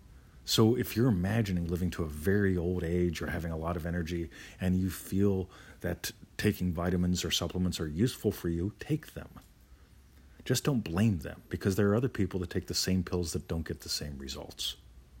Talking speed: 195 wpm